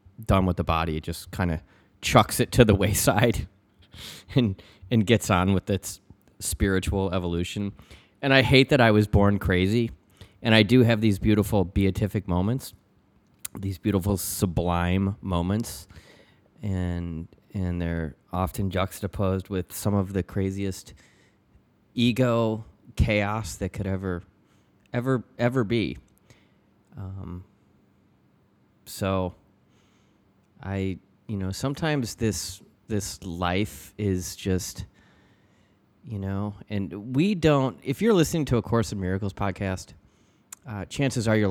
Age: 20-39